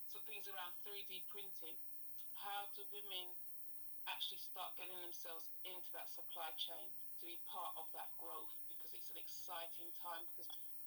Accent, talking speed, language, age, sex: British, 150 wpm, English, 30-49, female